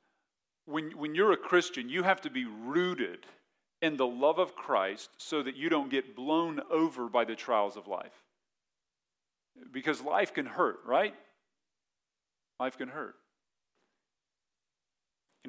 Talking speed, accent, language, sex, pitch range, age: 140 wpm, American, English, male, 120-145 Hz, 40-59